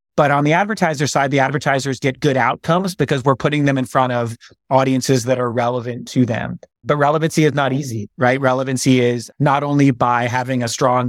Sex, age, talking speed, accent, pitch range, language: male, 30-49, 200 wpm, American, 130-150 Hz, English